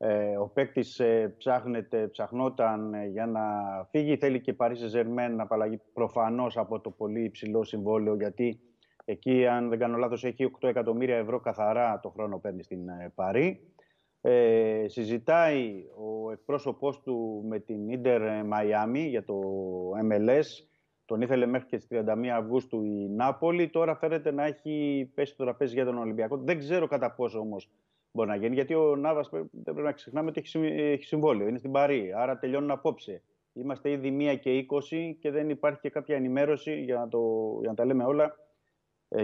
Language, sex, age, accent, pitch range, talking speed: Greek, male, 30-49, native, 110-140 Hz, 170 wpm